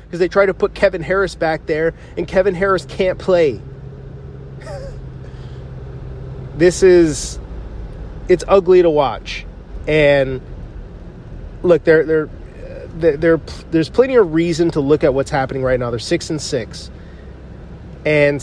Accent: American